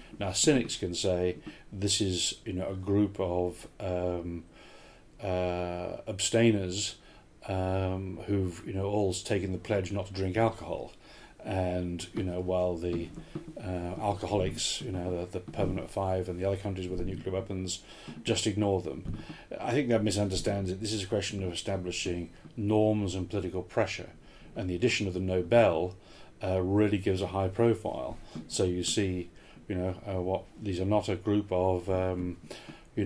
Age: 40-59